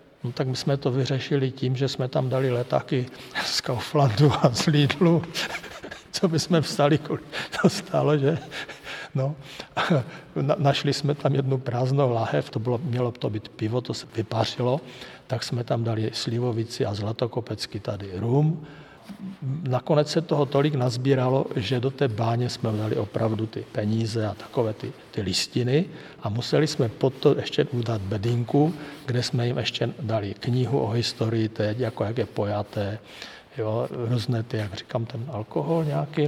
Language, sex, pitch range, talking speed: Czech, male, 120-145 Hz, 165 wpm